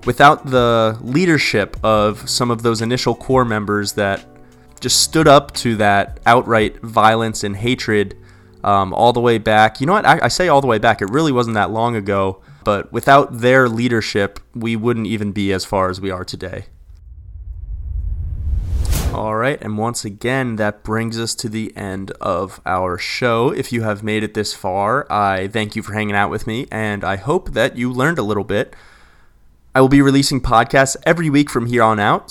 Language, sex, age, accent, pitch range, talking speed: English, male, 20-39, American, 105-125 Hz, 195 wpm